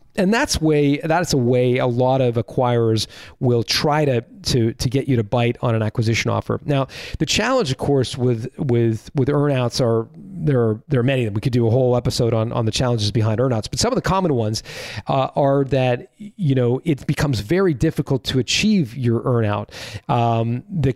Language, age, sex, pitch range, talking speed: English, 40-59, male, 120-145 Hz, 210 wpm